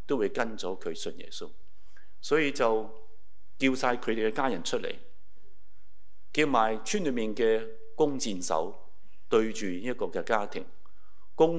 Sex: male